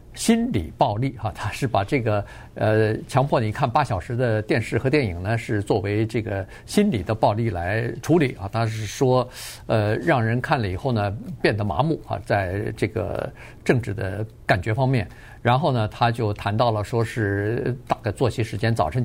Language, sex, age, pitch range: Chinese, male, 50-69, 110-145 Hz